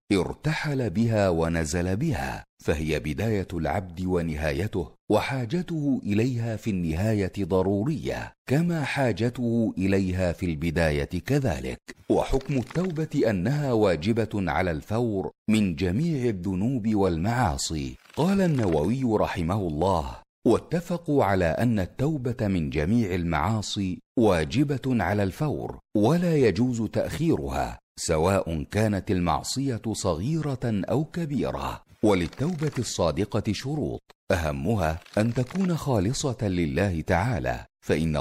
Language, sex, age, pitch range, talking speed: Arabic, male, 50-69, 90-130 Hz, 95 wpm